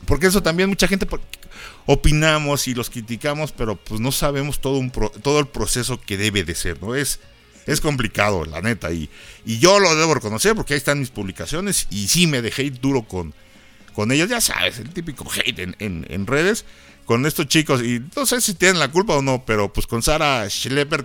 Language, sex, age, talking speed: Spanish, male, 50-69, 210 wpm